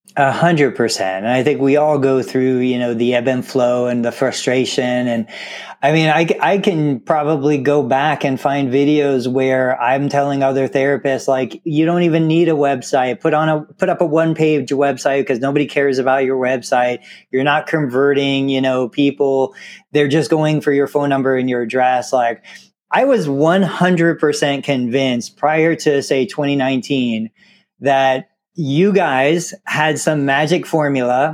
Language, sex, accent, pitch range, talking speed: English, male, American, 130-155 Hz, 165 wpm